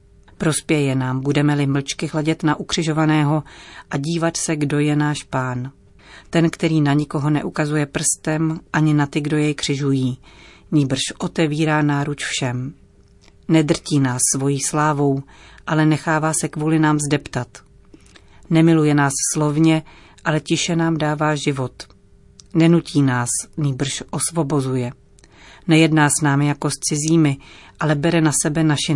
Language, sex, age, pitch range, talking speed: Czech, female, 40-59, 140-160 Hz, 130 wpm